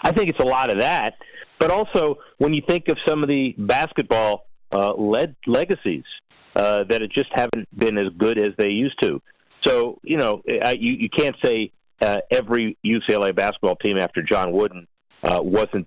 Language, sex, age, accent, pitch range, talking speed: English, male, 50-69, American, 100-165 Hz, 180 wpm